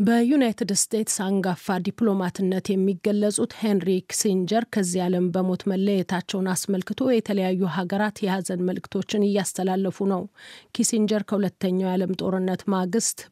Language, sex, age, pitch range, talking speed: Amharic, female, 30-49, 185-210 Hz, 100 wpm